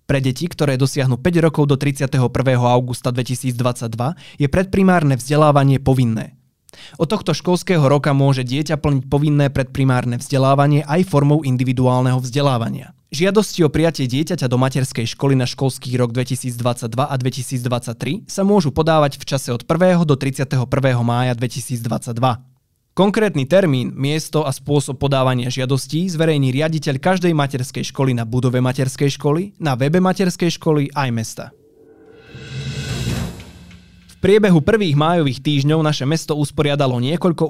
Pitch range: 130-155 Hz